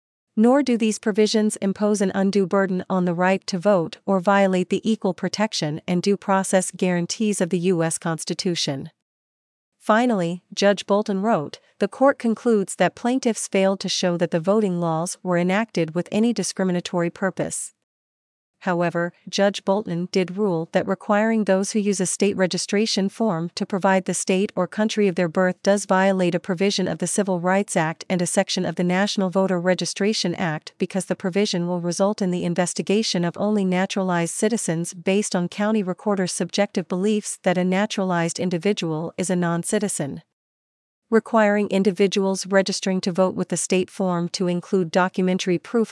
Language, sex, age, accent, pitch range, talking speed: English, female, 40-59, American, 180-200 Hz, 165 wpm